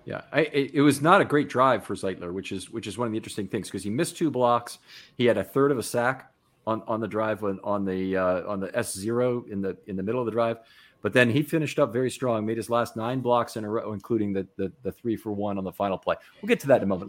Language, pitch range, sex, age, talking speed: English, 100-135 Hz, male, 40-59, 295 wpm